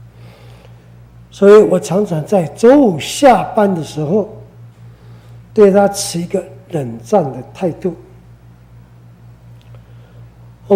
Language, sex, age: Chinese, male, 60-79